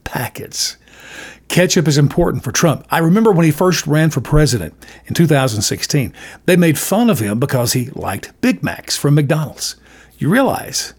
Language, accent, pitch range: English, American, 135-180 Hz